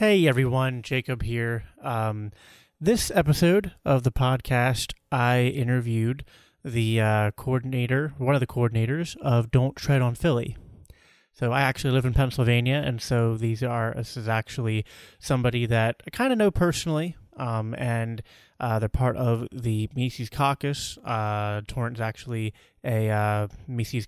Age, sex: 20-39, male